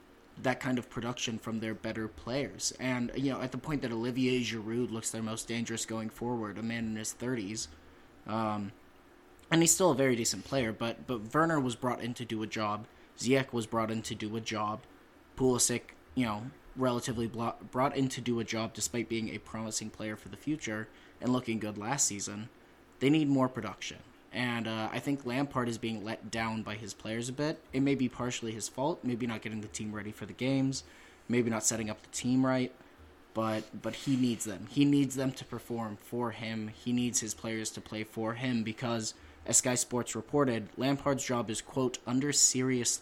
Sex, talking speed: male, 210 wpm